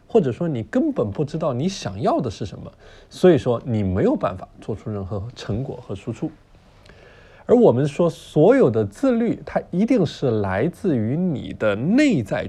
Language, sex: Chinese, male